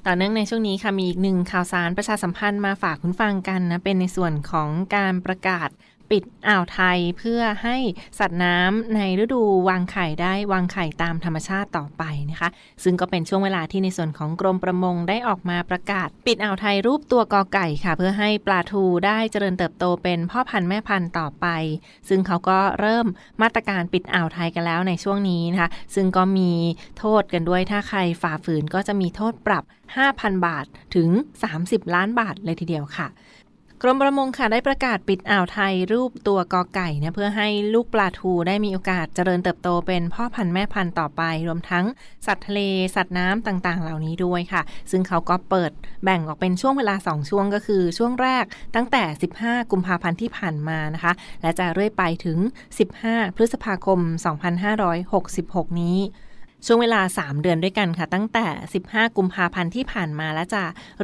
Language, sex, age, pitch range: Thai, female, 20-39, 175-210 Hz